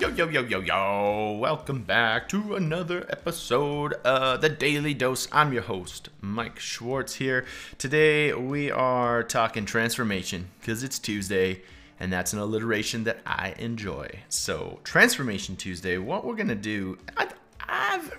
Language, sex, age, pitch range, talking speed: English, male, 20-39, 100-140 Hz, 150 wpm